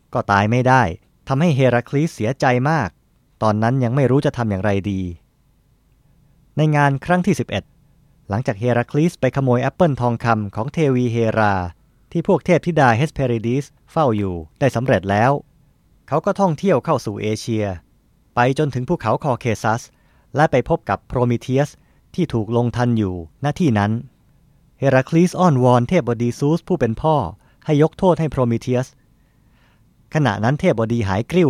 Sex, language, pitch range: male, Thai, 115-155 Hz